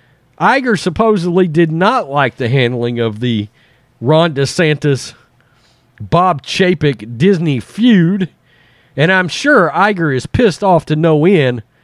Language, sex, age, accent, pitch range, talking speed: English, male, 40-59, American, 140-200 Hz, 125 wpm